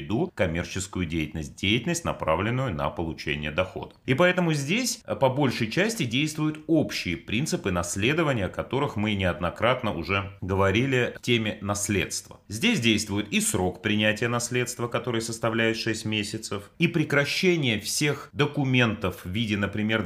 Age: 30-49